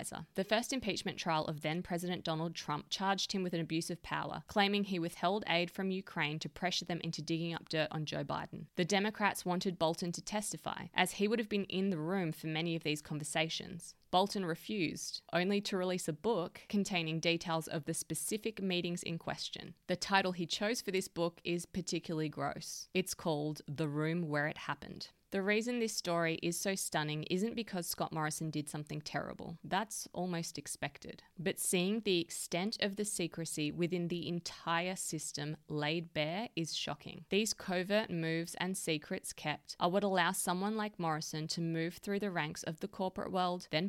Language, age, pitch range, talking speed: English, 20-39, 160-190 Hz, 185 wpm